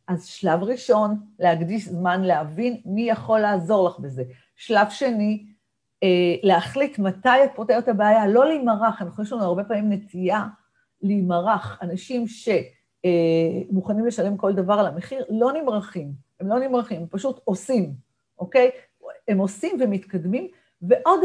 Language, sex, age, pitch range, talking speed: Hebrew, female, 50-69, 175-235 Hz, 135 wpm